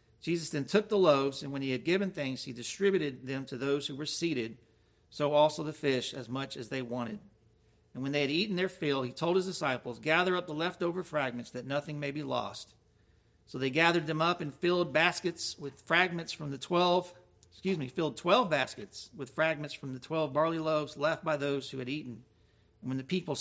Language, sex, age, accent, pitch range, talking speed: English, male, 50-69, American, 125-190 Hz, 215 wpm